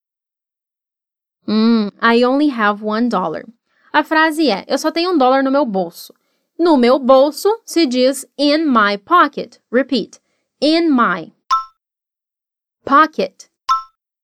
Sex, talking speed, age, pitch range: female, 120 wpm, 20-39, 230-315 Hz